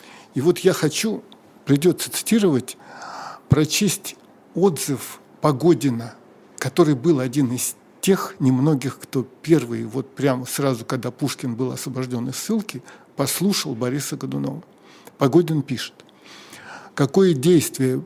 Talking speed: 110 wpm